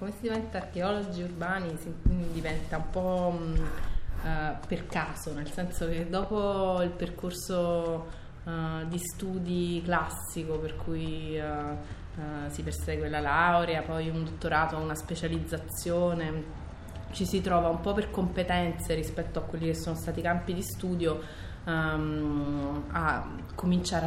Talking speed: 135 wpm